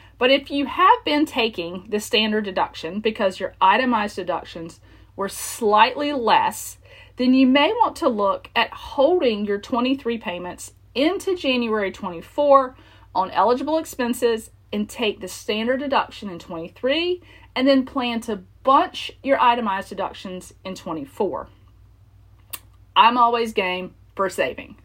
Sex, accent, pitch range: female, American, 190-255 Hz